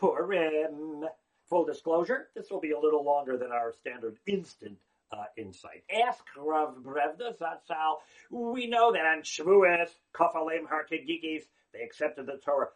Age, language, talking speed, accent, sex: 50-69, English, 135 wpm, American, male